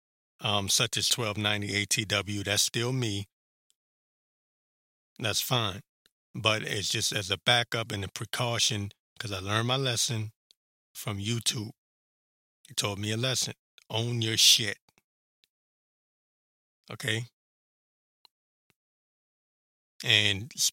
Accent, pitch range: American, 105-120 Hz